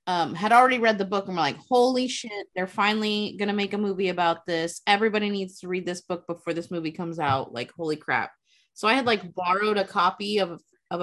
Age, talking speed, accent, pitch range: 20-39, 235 wpm, American, 160-210 Hz